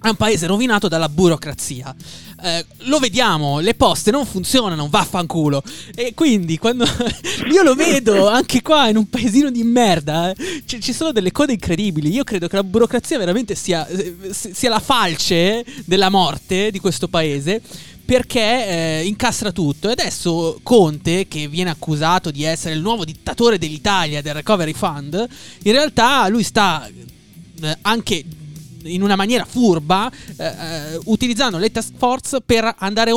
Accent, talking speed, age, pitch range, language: native, 155 wpm, 20-39, 180-245 Hz, Italian